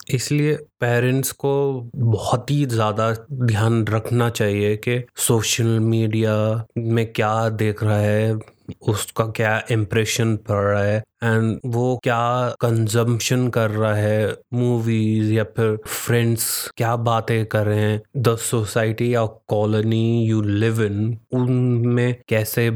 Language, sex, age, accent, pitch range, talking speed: English, male, 20-39, Indian, 110-125 Hz, 125 wpm